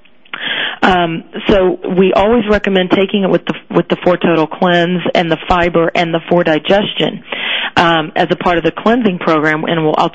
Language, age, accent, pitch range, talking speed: English, 40-59, American, 165-195 Hz, 190 wpm